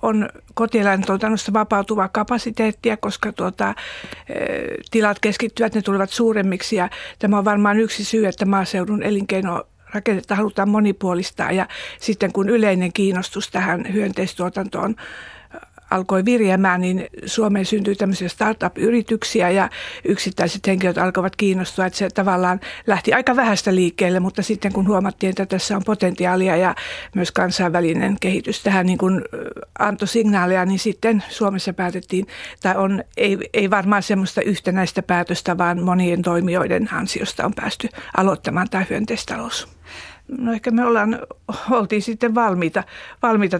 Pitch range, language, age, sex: 185-210 Hz, Finnish, 50-69, female